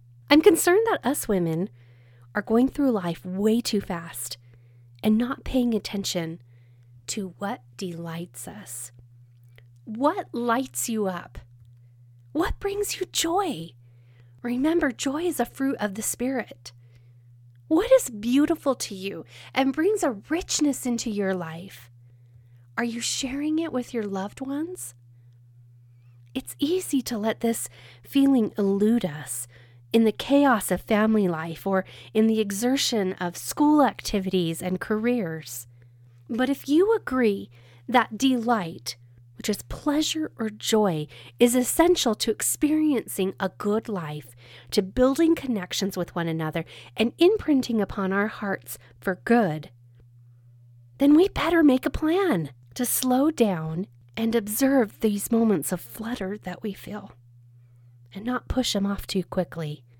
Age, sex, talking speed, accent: 30-49, female, 135 wpm, American